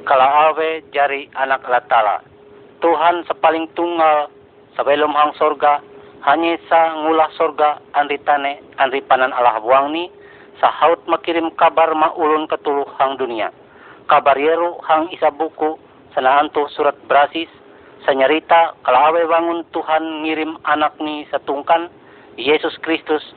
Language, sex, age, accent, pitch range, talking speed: Indonesian, male, 50-69, native, 145-165 Hz, 115 wpm